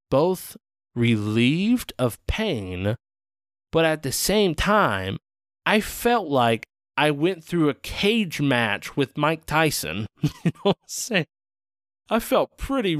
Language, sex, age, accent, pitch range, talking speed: English, male, 20-39, American, 100-155 Hz, 135 wpm